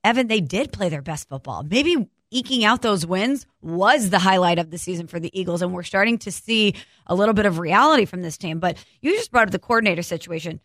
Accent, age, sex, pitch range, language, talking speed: American, 20-39, female, 175-215 Hz, English, 235 wpm